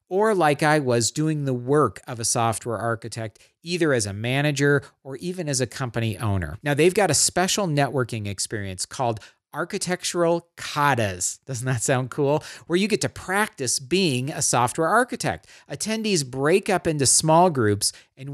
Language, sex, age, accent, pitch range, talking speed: English, male, 40-59, American, 115-155 Hz, 165 wpm